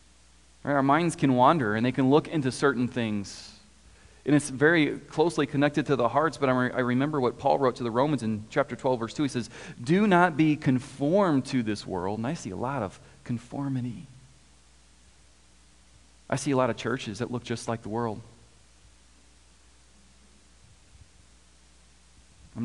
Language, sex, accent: English, male, American